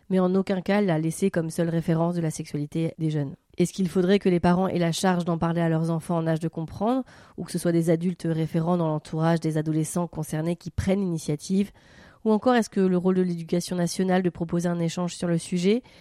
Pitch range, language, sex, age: 170-200 Hz, French, female, 30-49